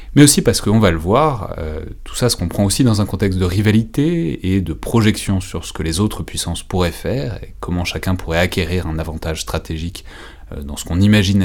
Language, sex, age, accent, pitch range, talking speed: French, male, 30-49, French, 85-115 Hz, 220 wpm